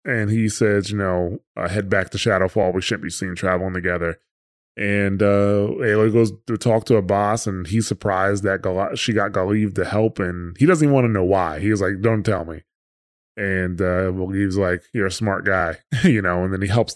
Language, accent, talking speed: English, American, 220 wpm